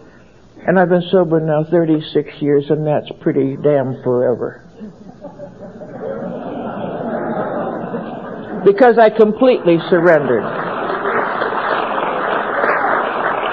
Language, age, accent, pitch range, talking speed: English, 60-79, American, 155-220 Hz, 70 wpm